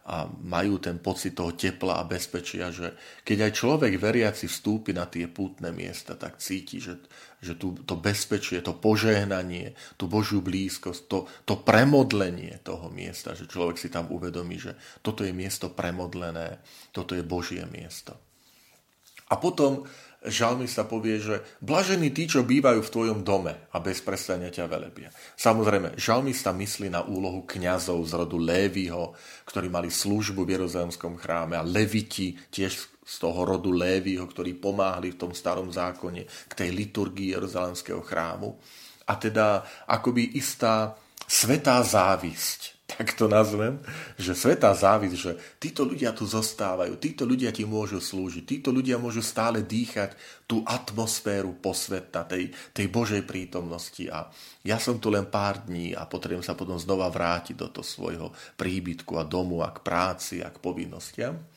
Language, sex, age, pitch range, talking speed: Slovak, male, 30-49, 90-110 Hz, 155 wpm